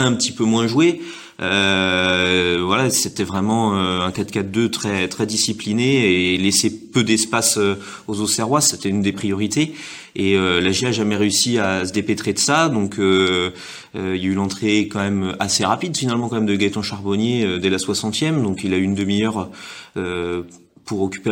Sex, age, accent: male, 30-49, French